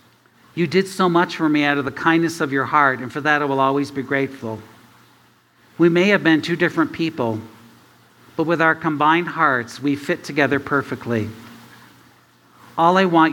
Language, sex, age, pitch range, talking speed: English, male, 50-69, 115-155 Hz, 180 wpm